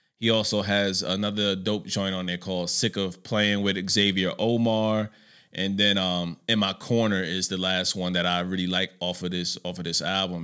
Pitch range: 95-110 Hz